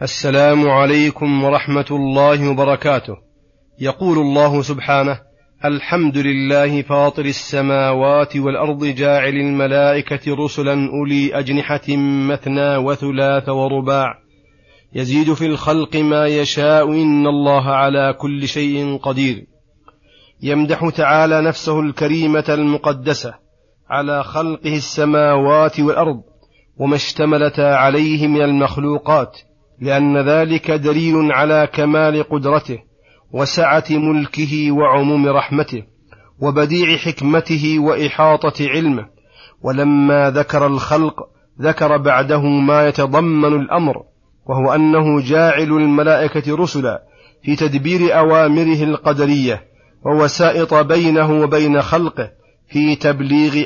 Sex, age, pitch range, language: male, 30-49, 140-155 Hz, Arabic